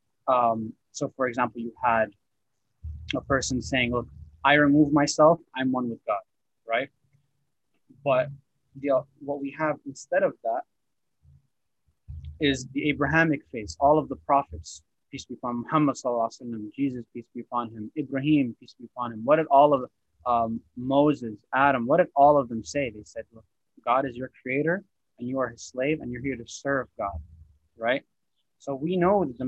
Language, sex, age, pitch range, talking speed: English, male, 20-39, 115-145 Hz, 175 wpm